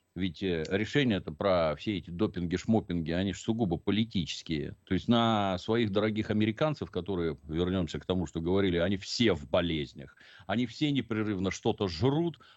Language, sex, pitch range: Russian, male, 85-110 Hz